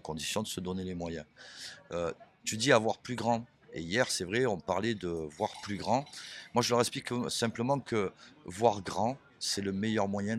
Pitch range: 95-115 Hz